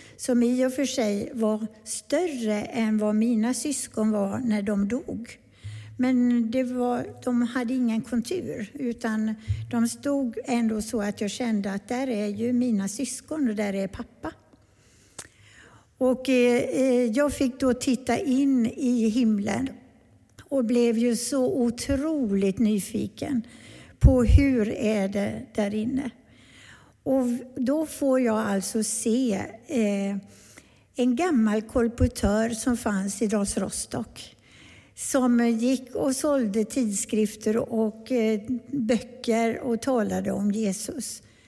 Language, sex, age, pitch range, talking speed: Swedish, female, 60-79, 215-255 Hz, 125 wpm